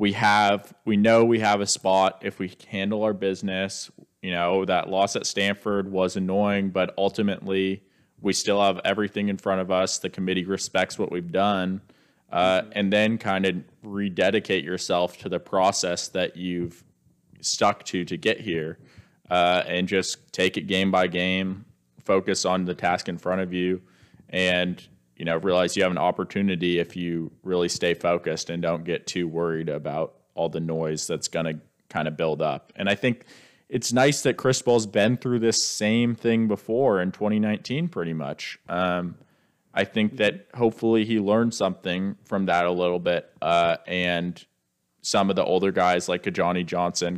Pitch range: 90-105 Hz